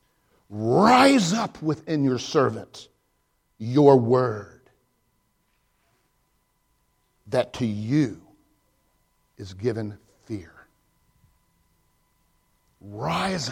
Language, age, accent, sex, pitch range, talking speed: English, 50-69, American, male, 120-185 Hz, 60 wpm